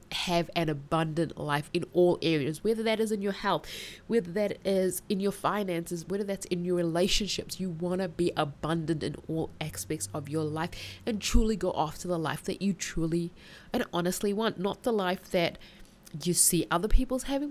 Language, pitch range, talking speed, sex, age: English, 160-205 Hz, 190 wpm, female, 20-39